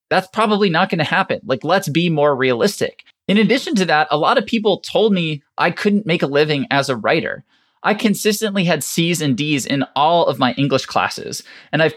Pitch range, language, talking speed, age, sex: 135-185 Hz, English, 210 wpm, 20-39, male